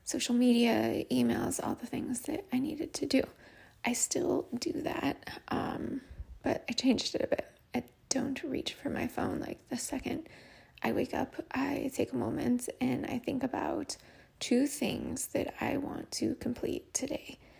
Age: 20-39